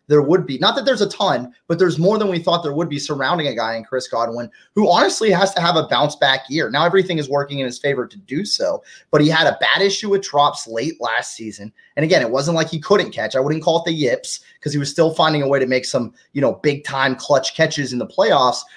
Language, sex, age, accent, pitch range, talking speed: English, male, 30-49, American, 130-180 Hz, 275 wpm